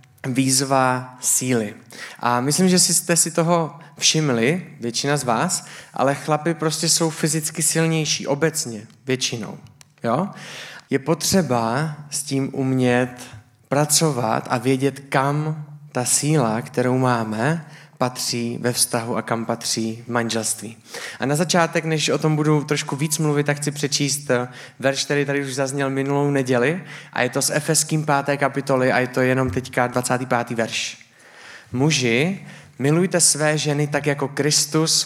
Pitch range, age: 125-150 Hz, 20-39